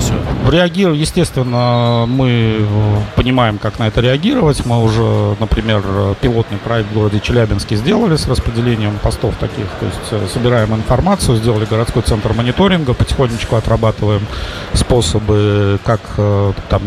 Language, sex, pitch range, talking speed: Russian, male, 105-125 Hz, 120 wpm